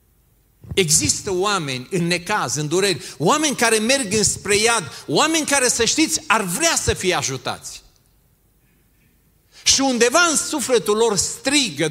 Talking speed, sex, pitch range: 130 wpm, male, 120-170 Hz